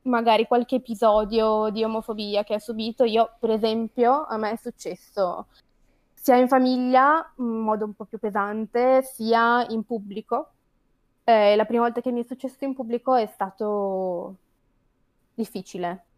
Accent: native